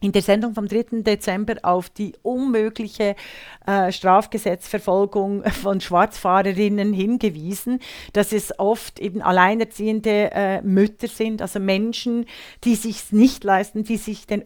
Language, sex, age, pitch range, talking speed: German, female, 40-59, 190-225 Hz, 135 wpm